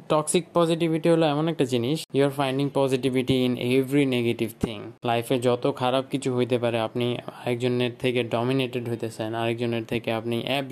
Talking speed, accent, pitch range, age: 80 wpm, native, 120-145 Hz, 20-39